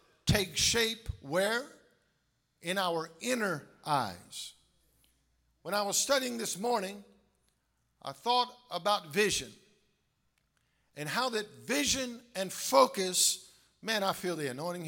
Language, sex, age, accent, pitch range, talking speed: English, male, 50-69, American, 175-225 Hz, 115 wpm